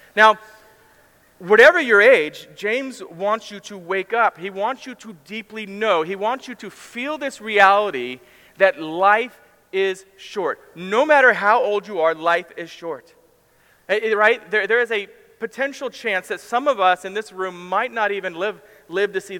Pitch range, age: 180-220 Hz, 40-59